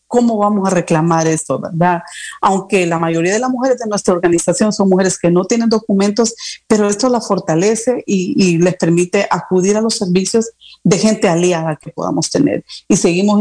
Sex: female